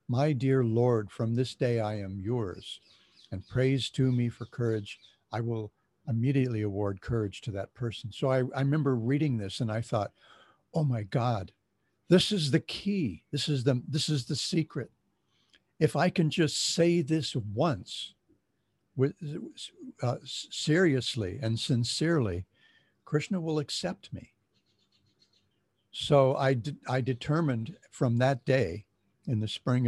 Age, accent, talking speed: 60-79, American, 145 wpm